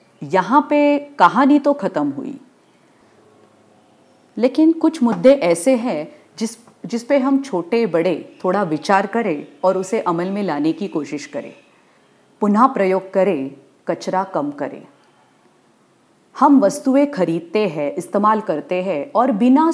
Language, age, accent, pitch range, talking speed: English, 40-59, Indian, 180-270 Hz, 130 wpm